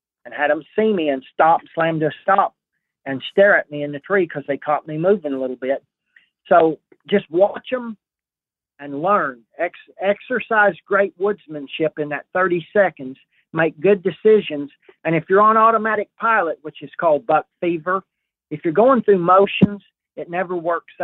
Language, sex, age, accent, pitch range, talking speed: English, male, 40-59, American, 145-195 Hz, 175 wpm